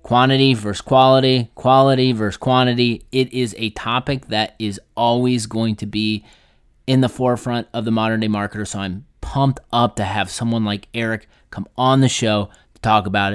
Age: 30-49